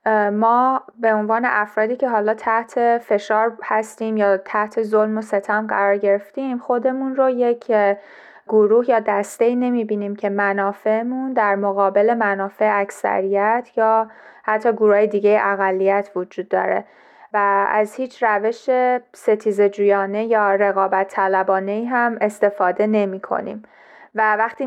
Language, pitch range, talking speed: Persian, 200-230 Hz, 125 wpm